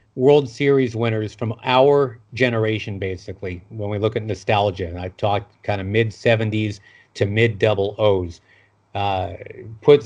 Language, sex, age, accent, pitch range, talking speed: English, male, 40-59, American, 105-130 Hz, 125 wpm